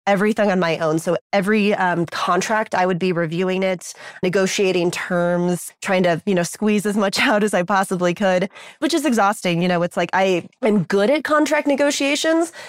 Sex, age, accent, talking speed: female, 20-39, American, 190 wpm